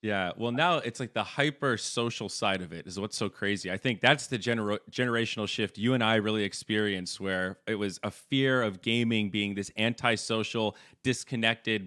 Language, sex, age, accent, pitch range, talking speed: English, male, 30-49, American, 100-125 Hz, 190 wpm